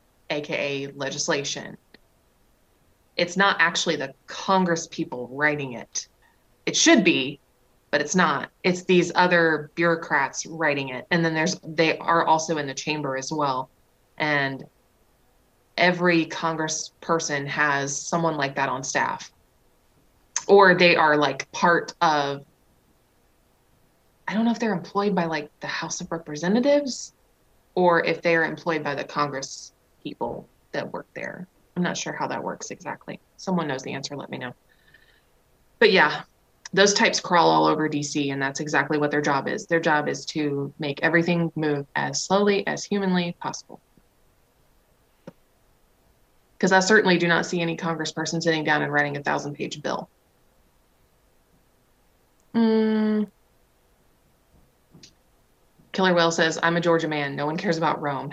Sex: female